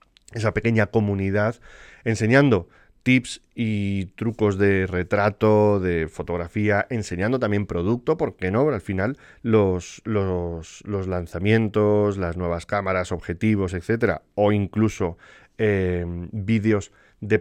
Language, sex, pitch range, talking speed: Spanish, male, 95-115 Hz, 110 wpm